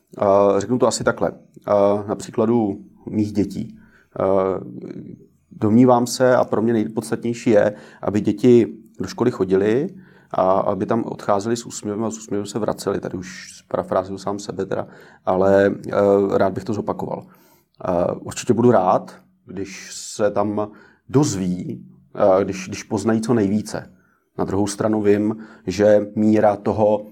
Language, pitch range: Czech, 100-110 Hz